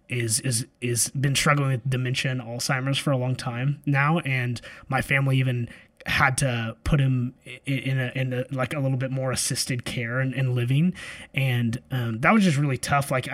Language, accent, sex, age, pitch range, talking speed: English, American, male, 20-39, 120-140 Hz, 200 wpm